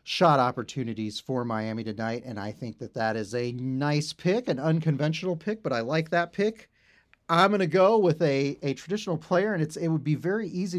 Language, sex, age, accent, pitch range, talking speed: English, male, 40-59, American, 120-160 Hz, 205 wpm